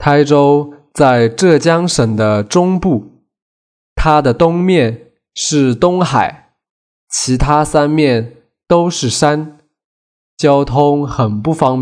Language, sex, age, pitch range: Chinese, male, 20-39, 115-155 Hz